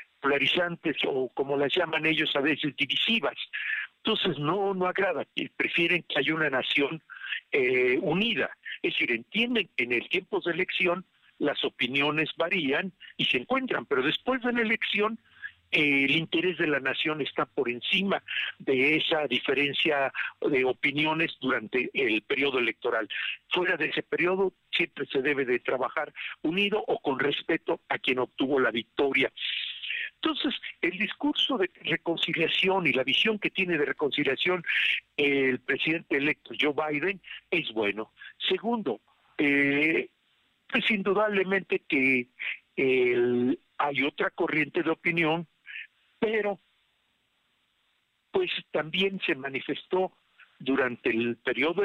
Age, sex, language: 50-69, male, Spanish